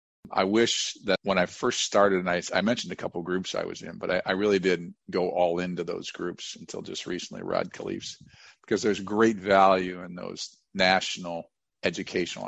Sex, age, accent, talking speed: male, 50-69, American, 195 wpm